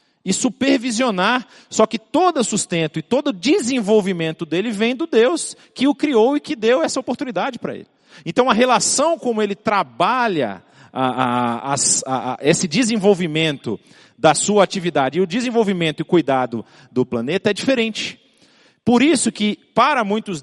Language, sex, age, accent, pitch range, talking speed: Portuguese, male, 40-59, Brazilian, 155-240 Hz, 140 wpm